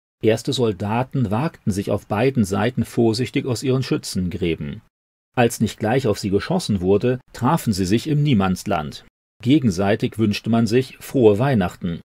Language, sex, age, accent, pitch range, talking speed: German, male, 40-59, German, 100-130 Hz, 145 wpm